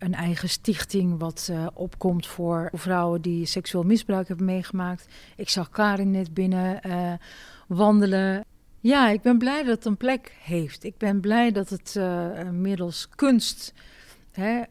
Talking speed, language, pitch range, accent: 155 wpm, Dutch, 175-205 Hz, Dutch